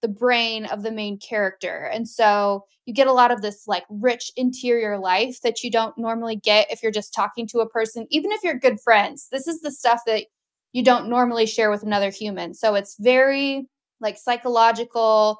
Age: 10-29